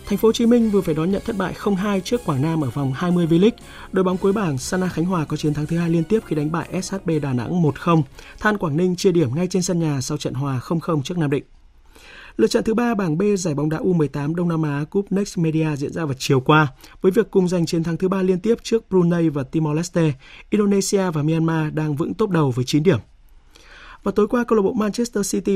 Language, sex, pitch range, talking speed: Vietnamese, male, 145-190 Hz, 255 wpm